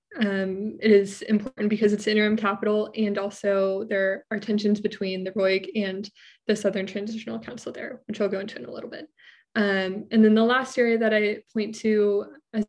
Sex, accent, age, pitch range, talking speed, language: female, American, 20-39, 195-220 Hz, 195 wpm, English